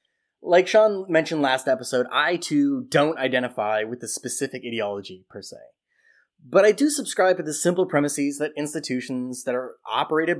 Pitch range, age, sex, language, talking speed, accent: 130-185 Hz, 20-39, male, English, 160 wpm, American